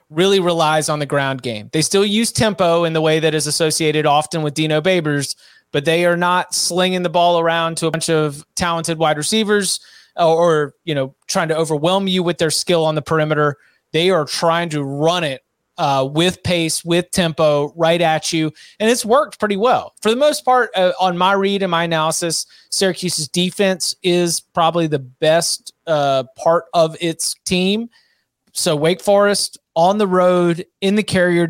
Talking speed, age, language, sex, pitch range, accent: 190 wpm, 30-49, English, male, 155-185 Hz, American